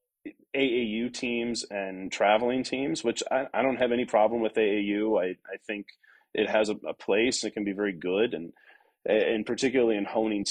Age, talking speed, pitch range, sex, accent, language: 30-49, 190 wpm, 110-145 Hz, male, American, English